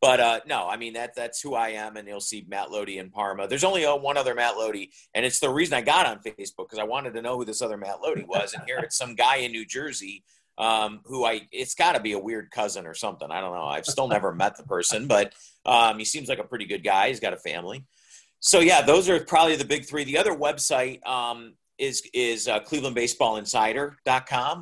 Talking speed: 250 wpm